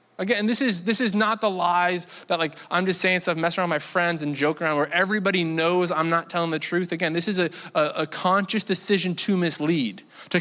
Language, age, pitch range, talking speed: English, 20-39, 155-195 Hz, 240 wpm